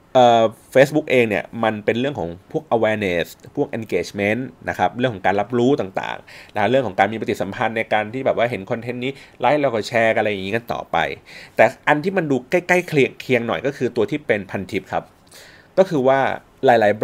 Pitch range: 100-130 Hz